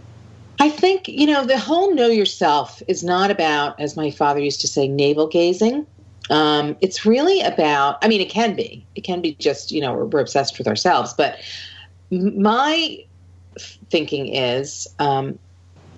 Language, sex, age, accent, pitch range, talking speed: English, female, 40-59, American, 135-205 Hz, 155 wpm